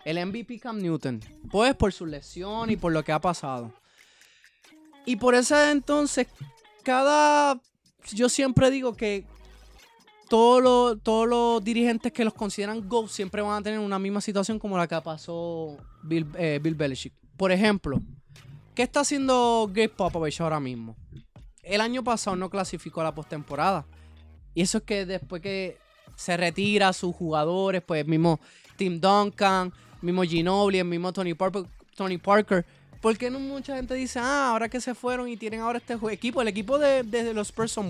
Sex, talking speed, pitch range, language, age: male, 170 wpm, 160-230 Hz, Spanish, 20-39